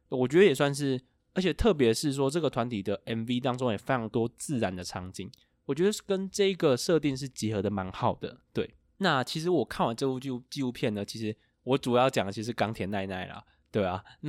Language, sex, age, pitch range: Chinese, male, 20-39, 110-140 Hz